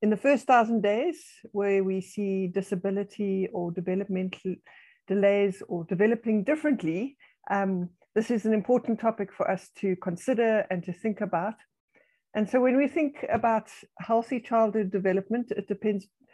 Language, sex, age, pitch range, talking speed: English, female, 60-79, 185-220 Hz, 145 wpm